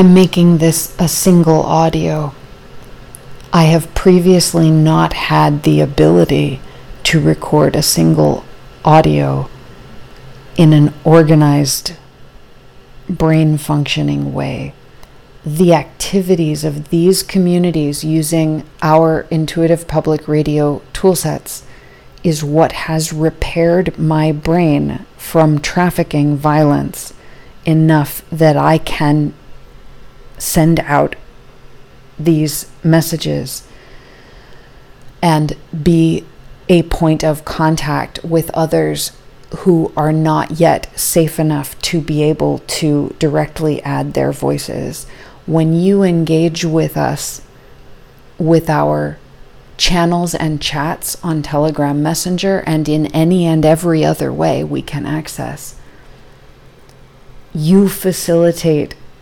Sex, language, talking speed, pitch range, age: female, English, 100 wpm, 145-165 Hz, 40-59